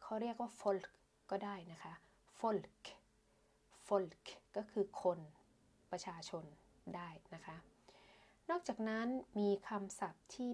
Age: 20-39